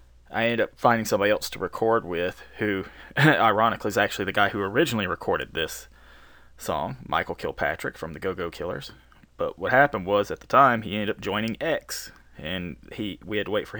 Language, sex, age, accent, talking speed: English, male, 20-39, American, 200 wpm